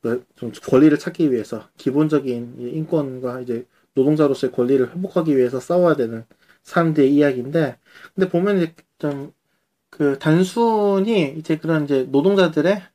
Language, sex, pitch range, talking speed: English, male, 150-205 Hz, 105 wpm